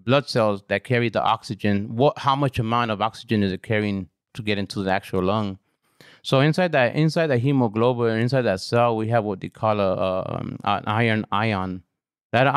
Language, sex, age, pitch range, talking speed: English, male, 30-49, 110-135 Hz, 195 wpm